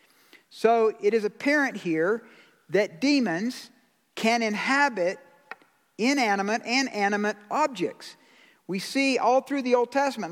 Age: 50-69